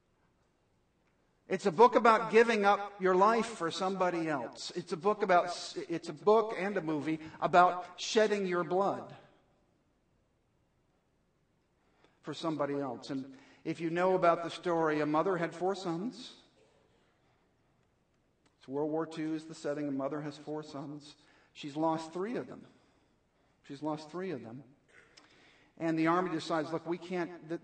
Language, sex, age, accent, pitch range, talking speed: English, male, 50-69, American, 150-180 Hz, 150 wpm